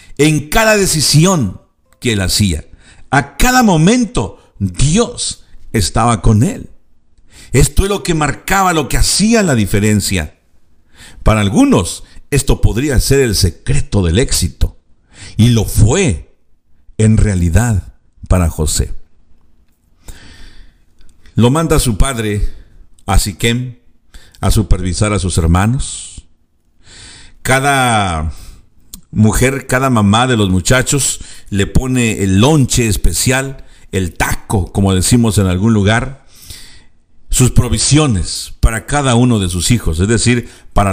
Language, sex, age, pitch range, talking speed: Spanish, male, 50-69, 85-125 Hz, 120 wpm